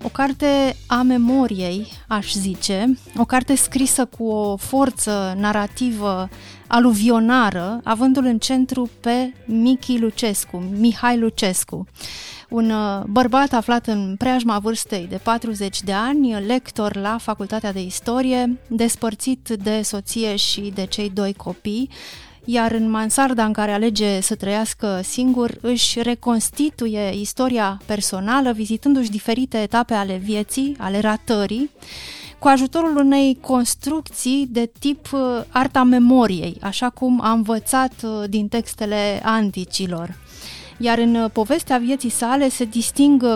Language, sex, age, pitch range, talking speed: Romanian, female, 30-49, 205-250 Hz, 120 wpm